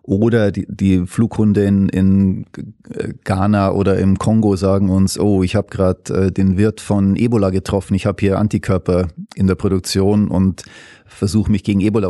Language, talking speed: German, 165 wpm